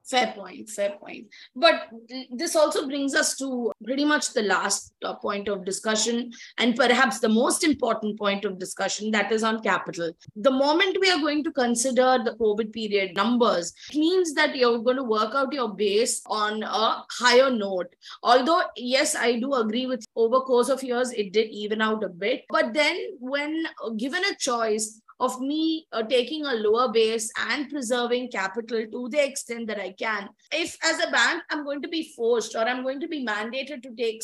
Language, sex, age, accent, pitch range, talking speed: English, female, 20-39, Indian, 215-285 Hz, 190 wpm